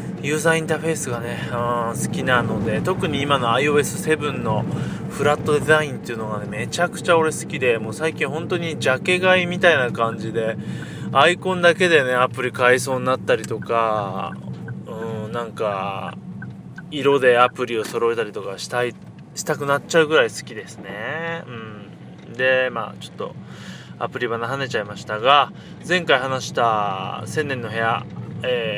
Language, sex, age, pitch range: Japanese, male, 20-39, 115-160 Hz